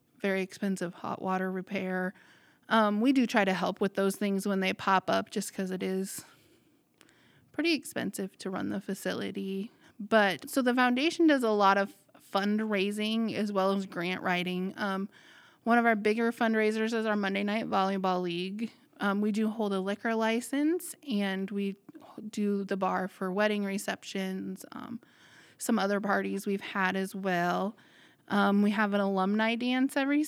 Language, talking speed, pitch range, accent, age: English, 165 wpm, 195-230 Hz, American, 20-39